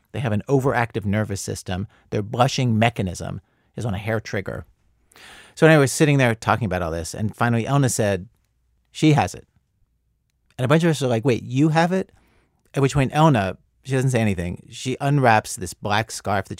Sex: male